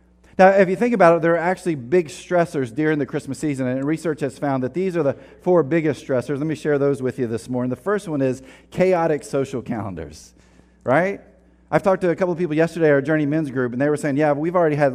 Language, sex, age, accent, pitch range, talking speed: English, male, 40-59, American, 130-185 Hz, 250 wpm